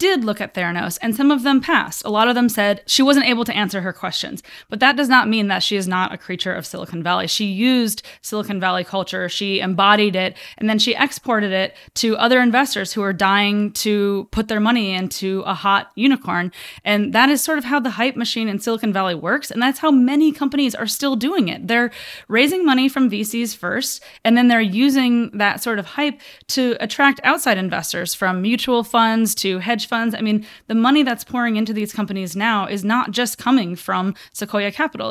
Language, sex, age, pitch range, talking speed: English, female, 20-39, 195-245 Hz, 215 wpm